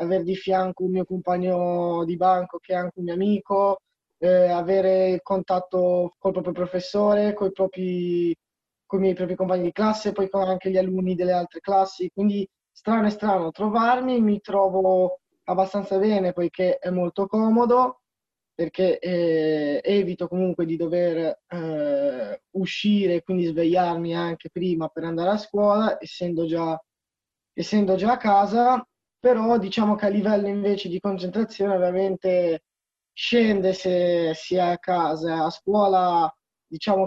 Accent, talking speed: native, 145 wpm